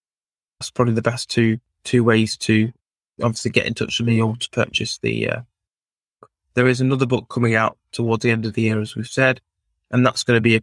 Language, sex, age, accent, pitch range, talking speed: English, male, 20-39, British, 105-120 Hz, 225 wpm